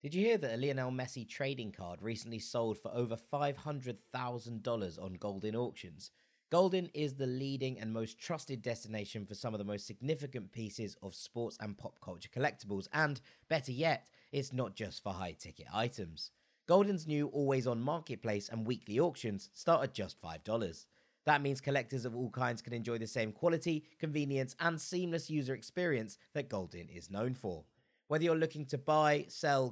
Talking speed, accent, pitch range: 175 wpm, British, 110-150 Hz